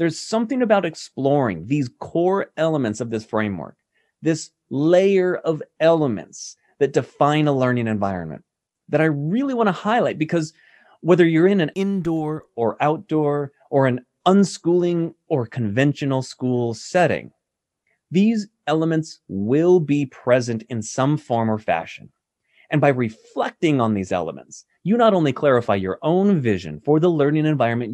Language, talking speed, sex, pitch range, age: English, 145 wpm, male, 125-175 Hz, 30-49